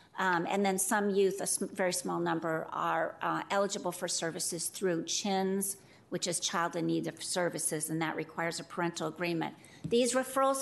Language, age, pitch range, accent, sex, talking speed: English, 50-69, 185-215 Hz, American, female, 175 wpm